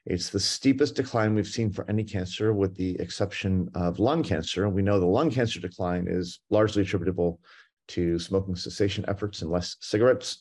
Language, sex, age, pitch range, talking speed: English, male, 30-49, 90-110 Hz, 185 wpm